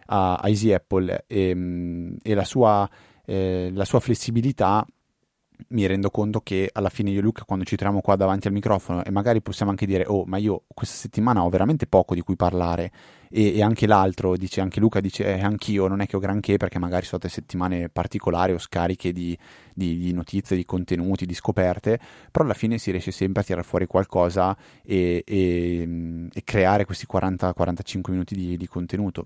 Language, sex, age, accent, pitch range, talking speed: Italian, male, 20-39, native, 90-100 Hz, 185 wpm